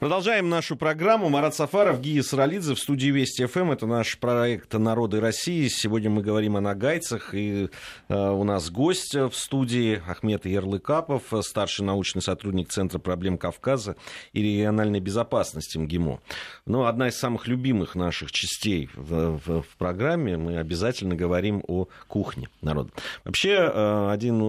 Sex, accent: male, native